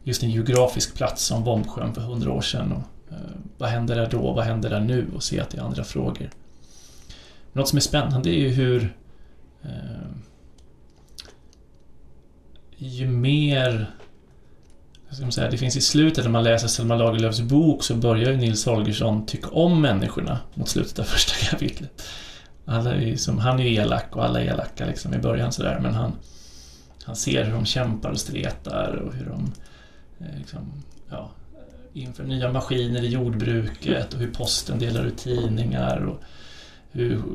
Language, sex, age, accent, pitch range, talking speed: Swedish, male, 30-49, native, 80-130 Hz, 175 wpm